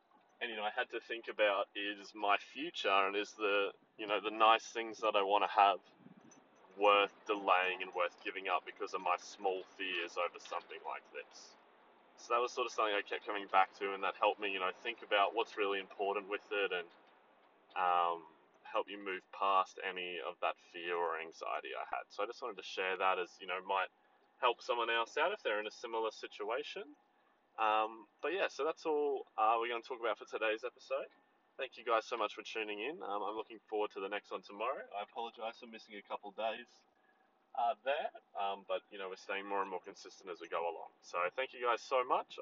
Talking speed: 225 wpm